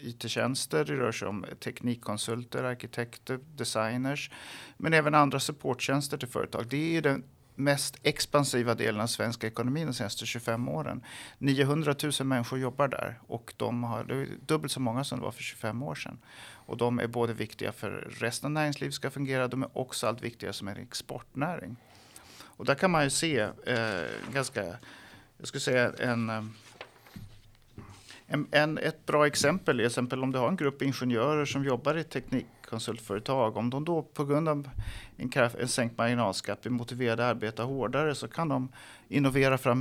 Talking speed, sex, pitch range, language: 175 wpm, male, 115-140 Hz, Swedish